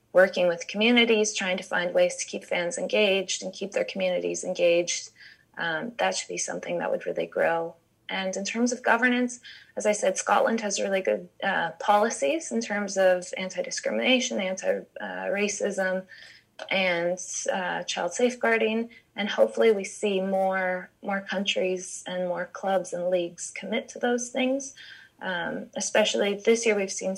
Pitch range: 180-230 Hz